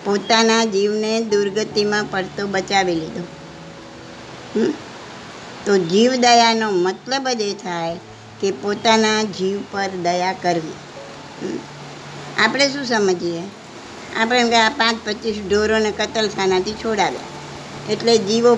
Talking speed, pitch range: 105 wpm, 195-235 Hz